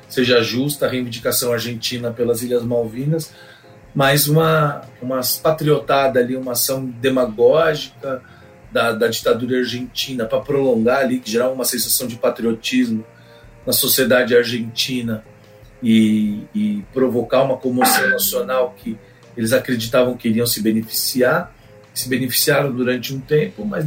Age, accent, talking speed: 40-59, Brazilian, 125 wpm